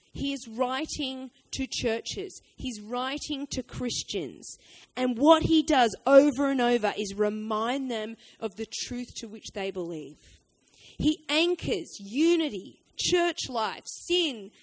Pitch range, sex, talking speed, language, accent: 245-325 Hz, female, 130 wpm, English, Australian